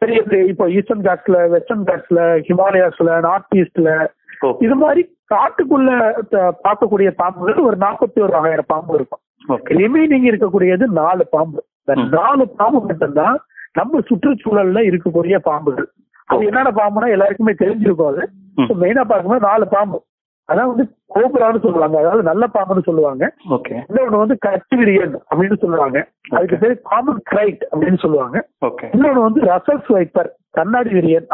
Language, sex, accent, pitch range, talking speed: Tamil, male, native, 185-255 Hz, 80 wpm